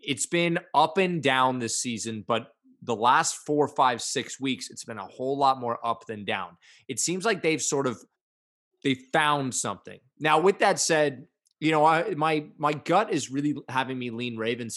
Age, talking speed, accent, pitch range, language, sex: 20-39, 190 wpm, American, 125-160 Hz, English, male